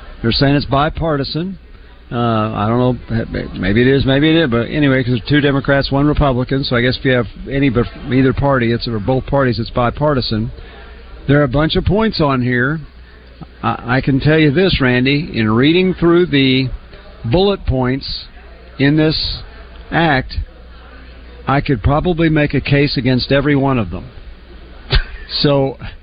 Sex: male